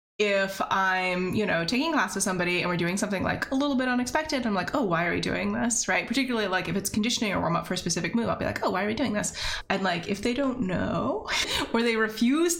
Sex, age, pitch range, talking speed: female, 20-39, 180-255 Hz, 265 wpm